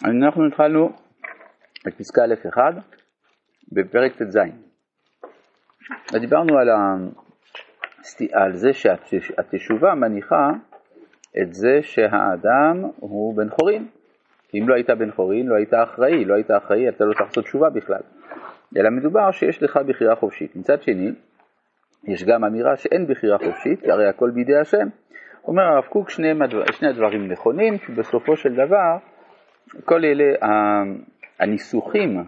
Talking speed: 130 wpm